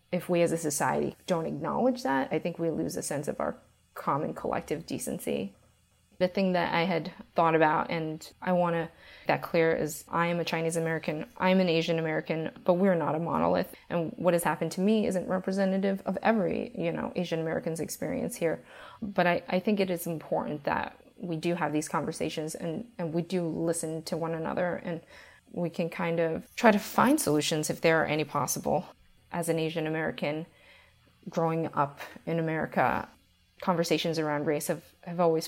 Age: 20-39